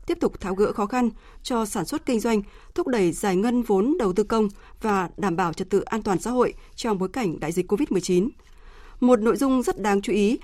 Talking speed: 235 wpm